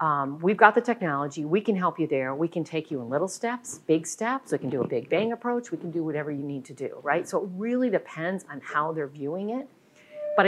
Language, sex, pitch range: English, female, 165-220 Hz